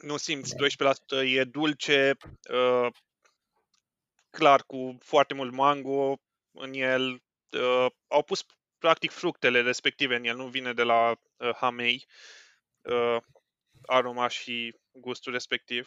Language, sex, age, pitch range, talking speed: Romanian, male, 20-39, 125-145 Hz, 120 wpm